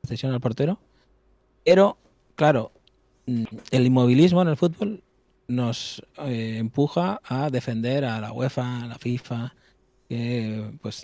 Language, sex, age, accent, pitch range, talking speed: Spanish, male, 20-39, Spanish, 115-130 Hz, 120 wpm